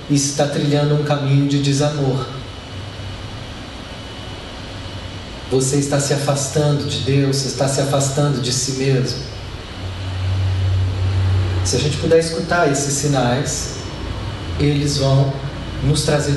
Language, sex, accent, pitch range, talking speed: Portuguese, male, Brazilian, 110-145 Hz, 115 wpm